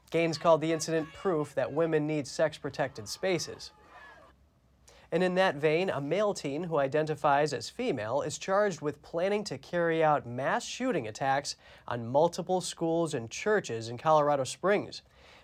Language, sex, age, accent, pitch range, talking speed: English, male, 30-49, American, 140-185 Hz, 150 wpm